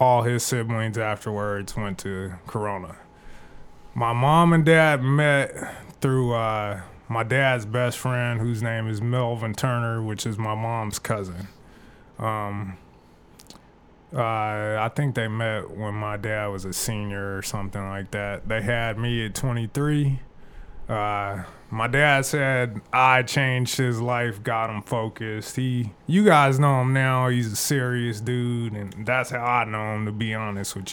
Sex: male